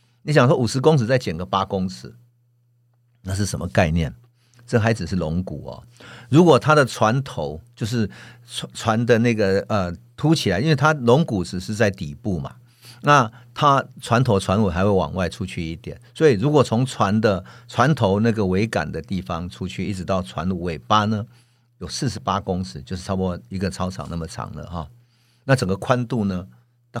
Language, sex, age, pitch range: Chinese, male, 50-69, 95-120 Hz